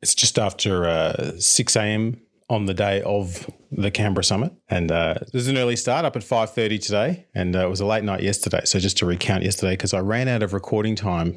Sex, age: male, 30-49